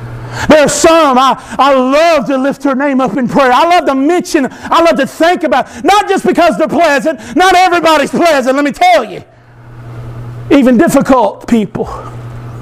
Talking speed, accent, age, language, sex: 170 wpm, American, 50-69, English, male